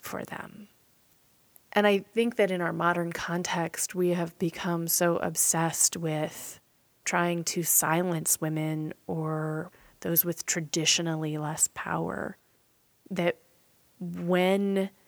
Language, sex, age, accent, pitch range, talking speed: English, female, 30-49, American, 160-190 Hz, 110 wpm